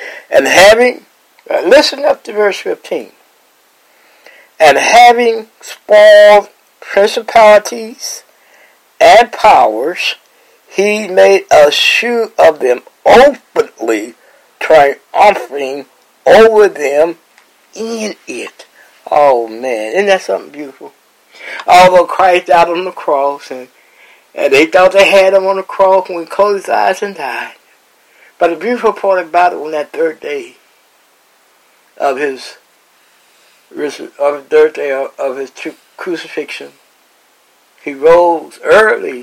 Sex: male